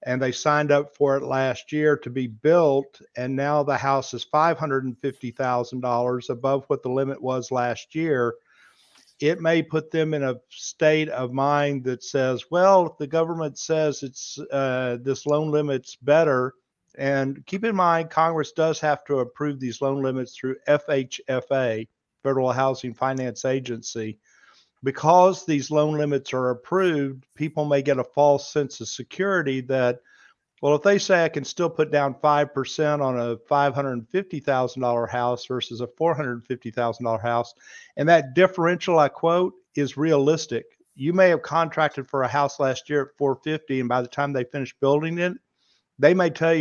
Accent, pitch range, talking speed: American, 125-155 Hz, 160 wpm